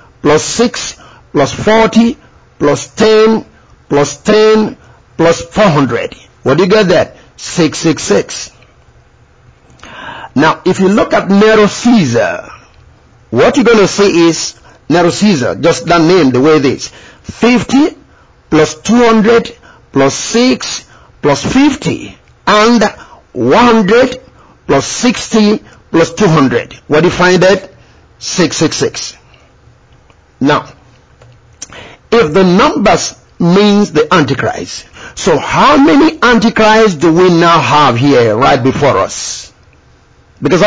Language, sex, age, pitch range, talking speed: English, male, 50-69, 165-220 Hz, 125 wpm